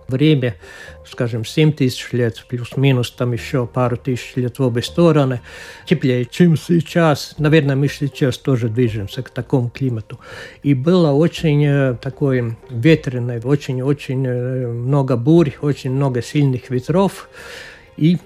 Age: 60-79